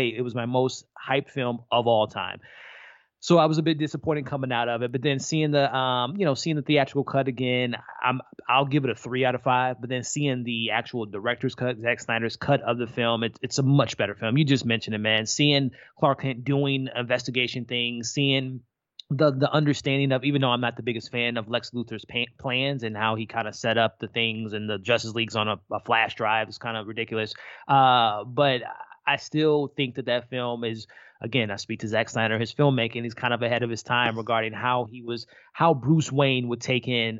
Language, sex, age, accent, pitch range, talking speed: English, male, 20-39, American, 115-135 Hz, 230 wpm